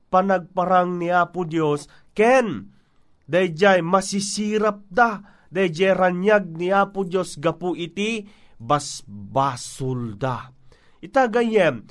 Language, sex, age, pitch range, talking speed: Filipino, male, 30-49, 165-210 Hz, 85 wpm